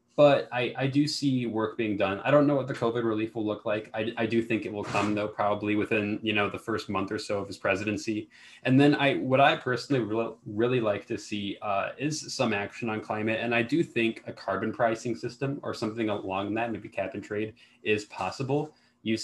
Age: 20-39